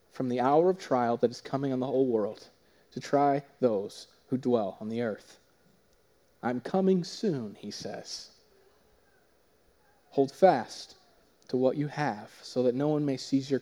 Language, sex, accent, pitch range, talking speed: English, male, American, 125-185 Hz, 165 wpm